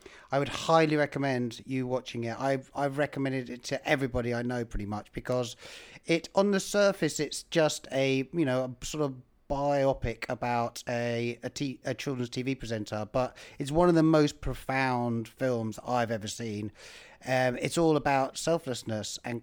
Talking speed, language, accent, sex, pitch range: 175 wpm, English, British, male, 120-155 Hz